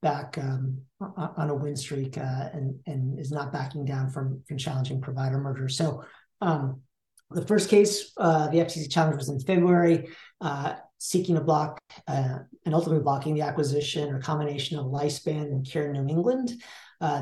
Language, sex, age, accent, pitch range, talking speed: English, male, 40-59, American, 145-170 Hz, 175 wpm